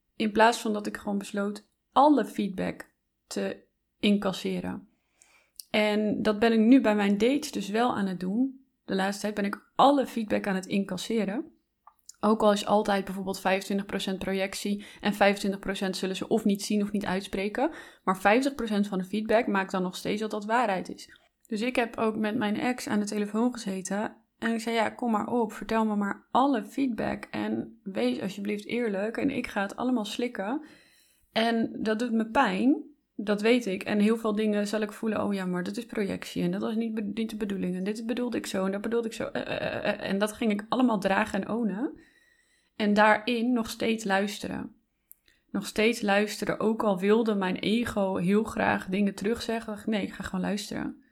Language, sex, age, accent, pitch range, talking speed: Dutch, female, 20-39, Dutch, 200-235 Hz, 200 wpm